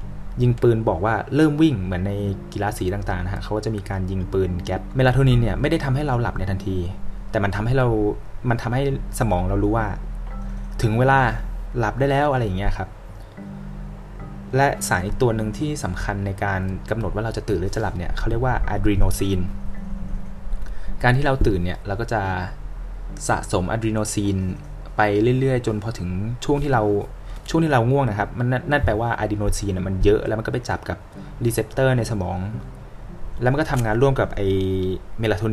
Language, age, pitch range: Thai, 20-39, 100-120 Hz